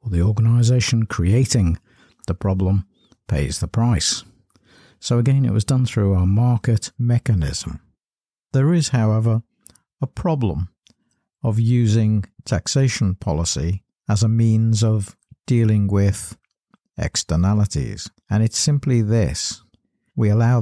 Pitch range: 90-115 Hz